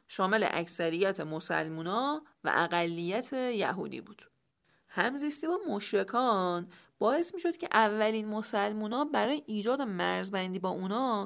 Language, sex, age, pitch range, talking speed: English, female, 30-49, 170-235 Hz, 110 wpm